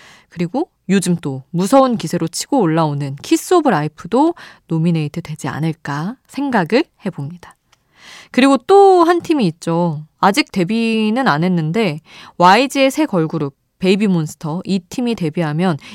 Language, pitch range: Korean, 165-240 Hz